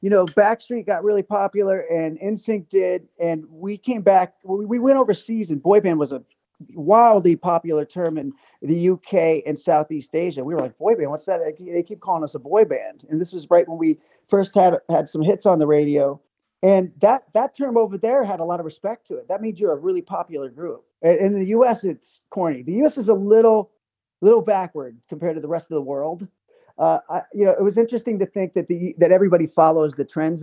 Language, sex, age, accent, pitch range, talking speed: English, male, 30-49, American, 160-220 Hz, 225 wpm